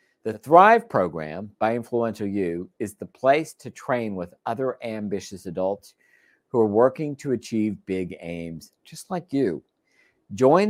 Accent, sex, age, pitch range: American, male, 50-69, 95-130 Hz